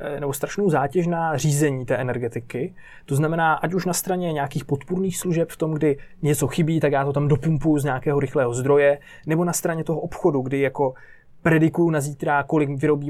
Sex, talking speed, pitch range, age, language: male, 190 wpm, 140-160 Hz, 20-39, Czech